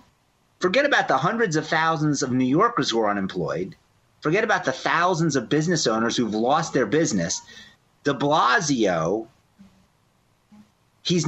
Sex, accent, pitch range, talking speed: male, American, 125-175 Hz, 140 wpm